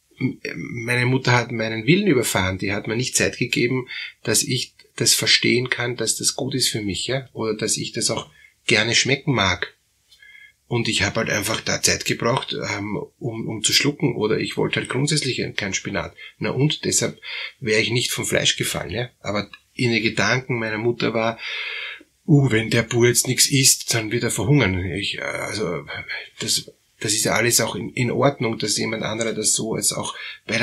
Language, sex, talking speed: German, male, 190 wpm